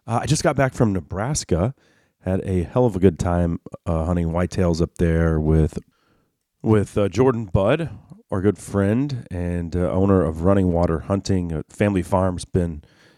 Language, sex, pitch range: English, male, 85-105 Hz